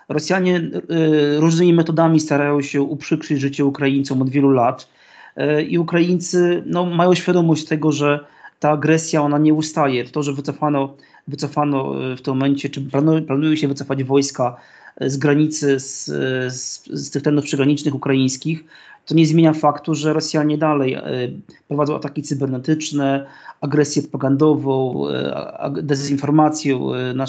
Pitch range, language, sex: 145-165 Hz, Polish, male